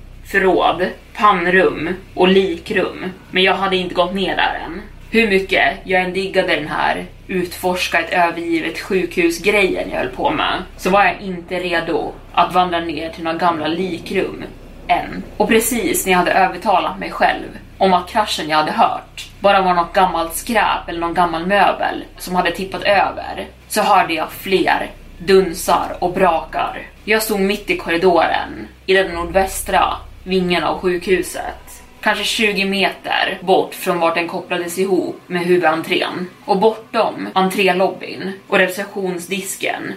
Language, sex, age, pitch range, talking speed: Swedish, female, 20-39, 170-195 Hz, 150 wpm